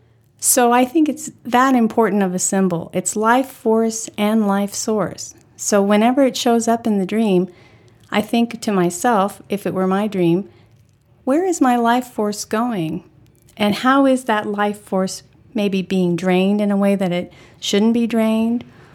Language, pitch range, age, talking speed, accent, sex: English, 170-220 Hz, 50-69, 175 wpm, American, female